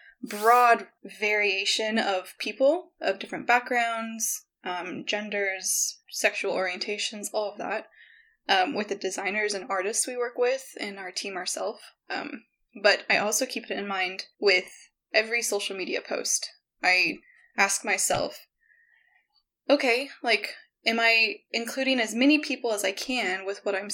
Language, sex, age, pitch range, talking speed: English, female, 10-29, 205-265 Hz, 145 wpm